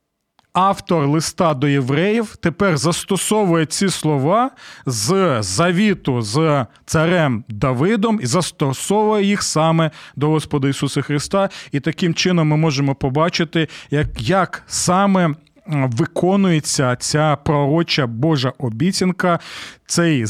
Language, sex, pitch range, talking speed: Ukrainian, male, 150-195 Hz, 105 wpm